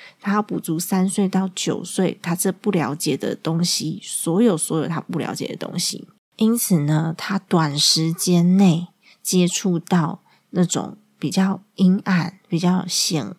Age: 20-39